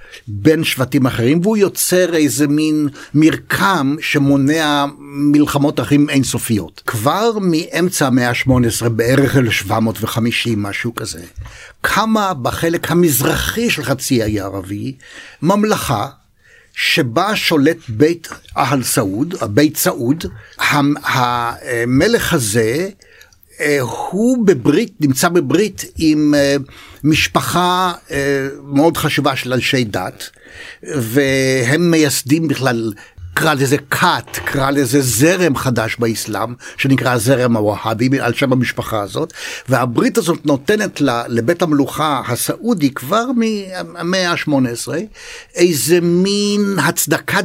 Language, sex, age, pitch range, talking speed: Hebrew, male, 60-79, 120-170 Hz, 105 wpm